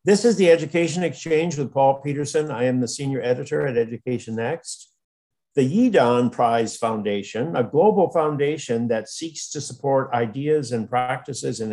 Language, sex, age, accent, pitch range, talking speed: English, male, 50-69, American, 125-160 Hz, 160 wpm